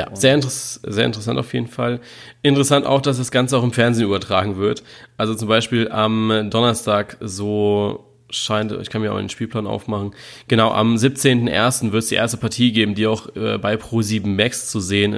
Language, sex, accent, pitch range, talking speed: German, male, German, 105-120 Hz, 195 wpm